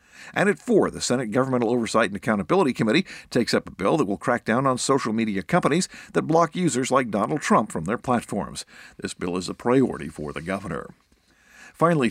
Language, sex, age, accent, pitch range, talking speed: English, male, 50-69, American, 110-150 Hz, 200 wpm